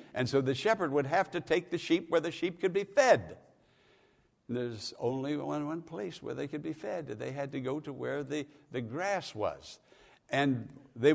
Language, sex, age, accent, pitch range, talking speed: English, male, 60-79, American, 130-170 Hz, 200 wpm